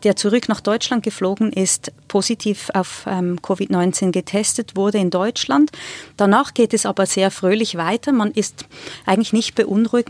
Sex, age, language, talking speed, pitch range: female, 30-49, German, 155 wpm, 185-220 Hz